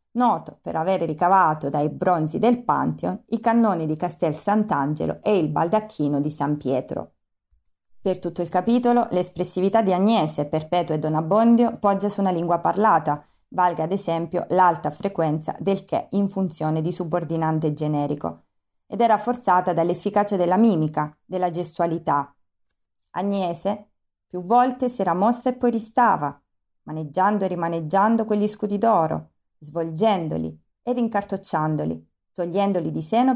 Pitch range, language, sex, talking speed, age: 155-210 Hz, Italian, female, 135 wpm, 30-49